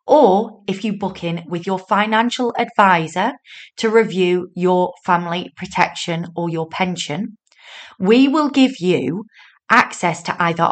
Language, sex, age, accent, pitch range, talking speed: English, female, 30-49, British, 170-220 Hz, 135 wpm